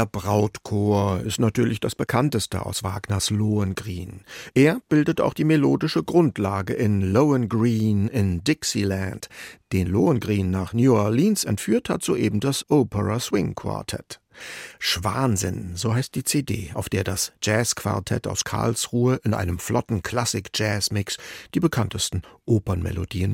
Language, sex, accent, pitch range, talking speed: German, male, German, 100-125 Hz, 130 wpm